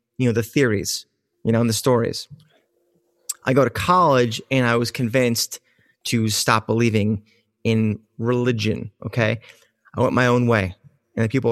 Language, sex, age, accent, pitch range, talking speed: English, male, 30-49, American, 115-130 Hz, 160 wpm